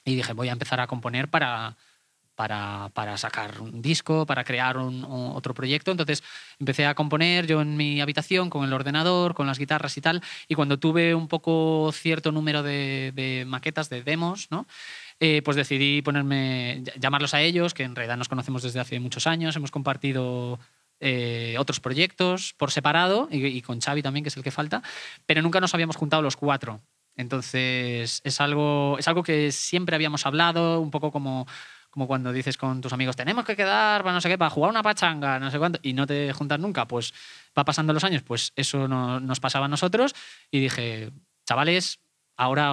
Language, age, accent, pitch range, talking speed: Spanish, 20-39, Spanish, 130-155 Hz, 195 wpm